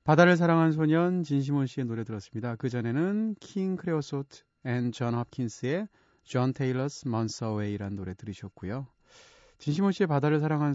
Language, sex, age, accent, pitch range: Korean, male, 30-49, native, 110-150 Hz